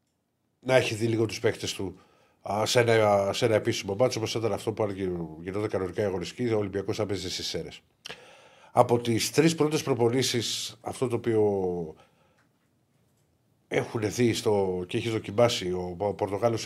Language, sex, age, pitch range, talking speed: Greek, male, 50-69, 100-120 Hz, 155 wpm